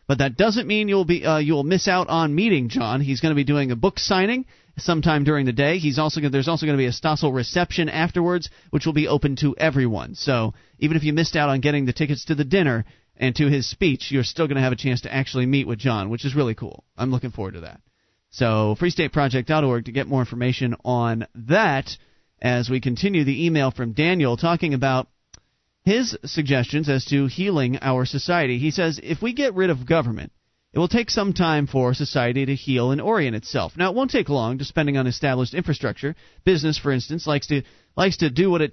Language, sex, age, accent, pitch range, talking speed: English, male, 30-49, American, 130-170 Hz, 225 wpm